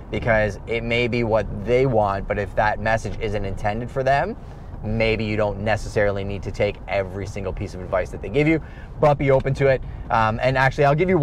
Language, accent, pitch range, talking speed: English, American, 100-125 Hz, 225 wpm